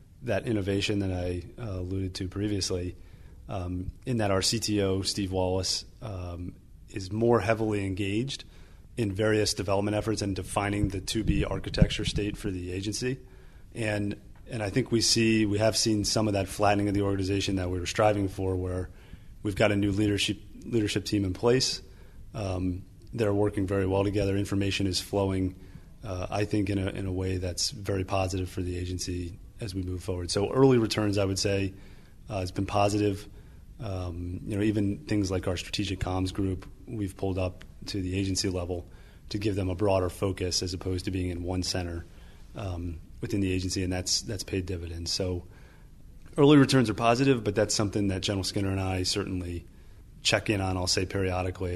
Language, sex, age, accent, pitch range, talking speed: English, male, 30-49, American, 90-105 Hz, 185 wpm